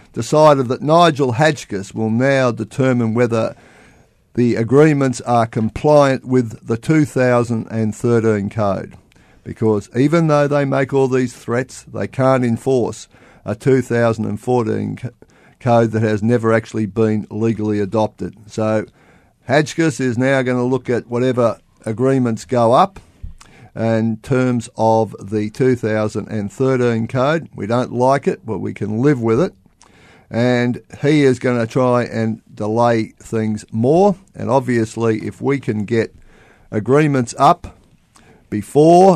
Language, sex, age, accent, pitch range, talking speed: English, male, 50-69, Australian, 105-130 Hz, 130 wpm